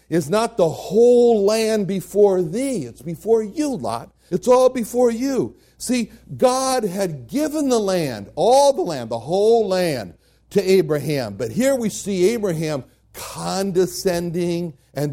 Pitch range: 140-215 Hz